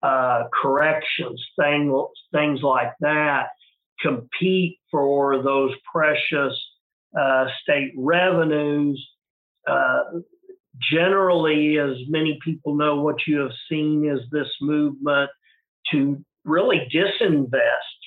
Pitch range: 130-160 Hz